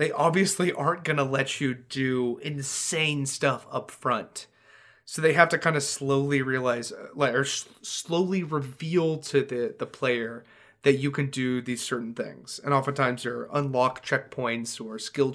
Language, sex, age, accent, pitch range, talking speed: English, male, 30-49, American, 125-160 Hz, 160 wpm